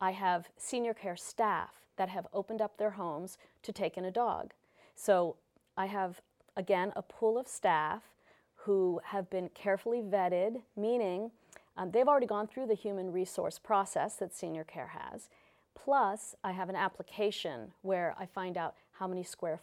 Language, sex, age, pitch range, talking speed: English, female, 40-59, 180-215 Hz, 170 wpm